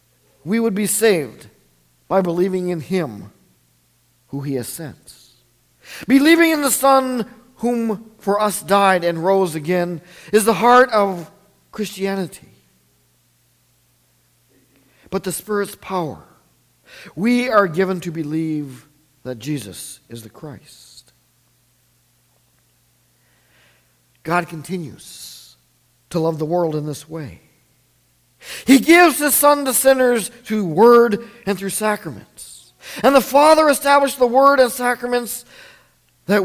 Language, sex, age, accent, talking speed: English, male, 50-69, American, 115 wpm